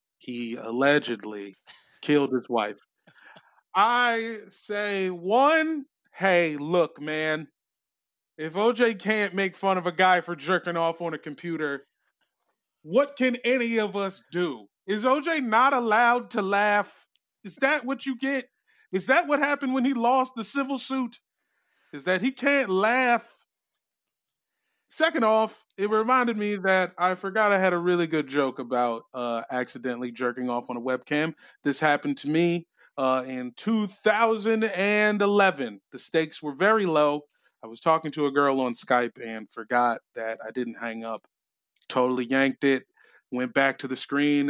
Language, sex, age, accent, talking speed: English, male, 30-49, American, 155 wpm